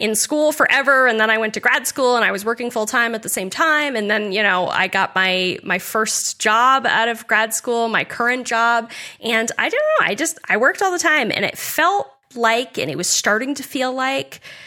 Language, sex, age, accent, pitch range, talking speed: English, female, 10-29, American, 190-235 Hz, 240 wpm